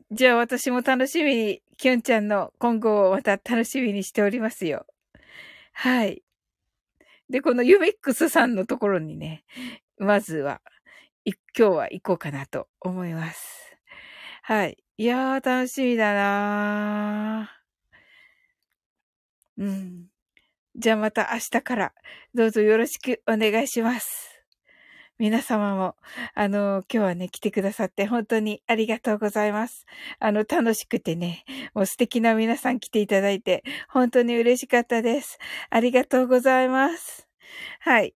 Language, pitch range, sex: Japanese, 215-275 Hz, female